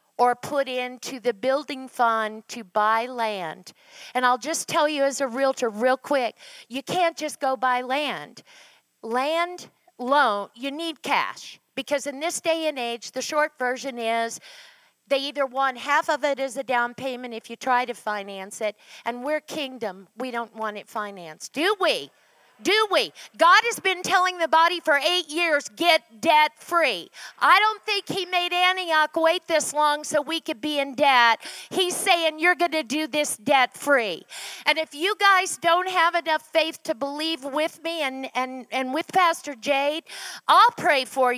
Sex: female